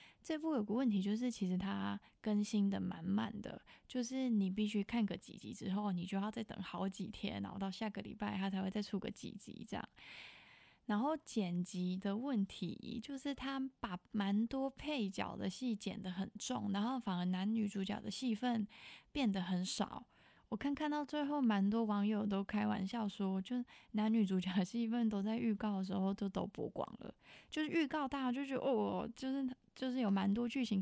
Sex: female